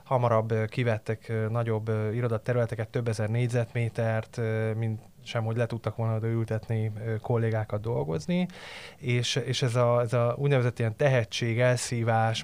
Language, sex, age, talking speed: Hungarian, male, 20-39, 120 wpm